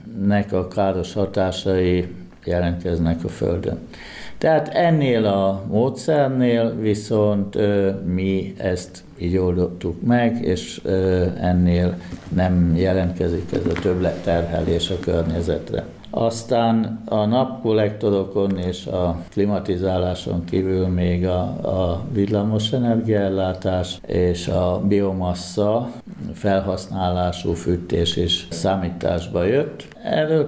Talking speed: 95 wpm